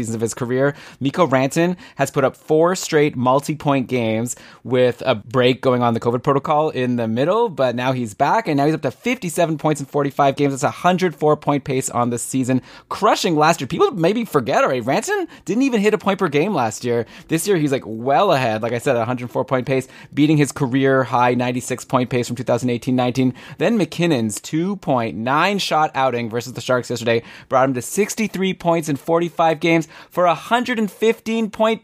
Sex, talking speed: male, 190 wpm